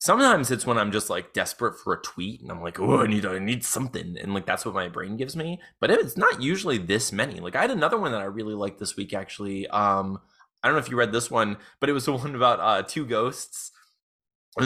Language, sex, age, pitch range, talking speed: English, male, 20-39, 105-135 Hz, 260 wpm